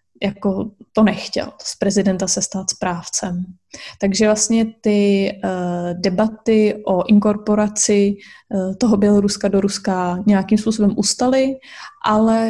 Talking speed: 105 wpm